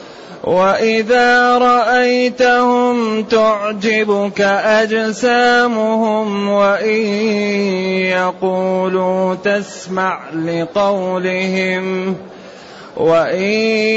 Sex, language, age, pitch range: male, Arabic, 30-49, 185-220 Hz